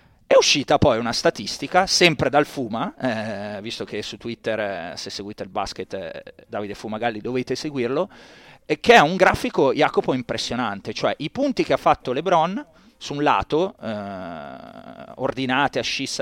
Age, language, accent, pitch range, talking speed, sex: 30-49, Italian, native, 120-155 Hz, 160 wpm, male